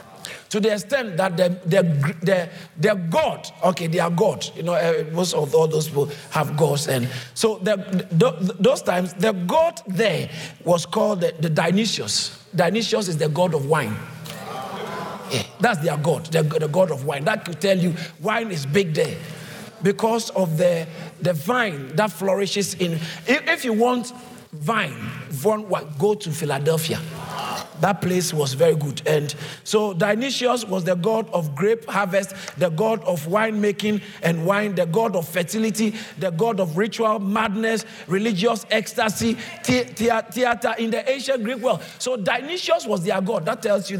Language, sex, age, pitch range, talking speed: English, male, 50-69, 165-220 Hz, 160 wpm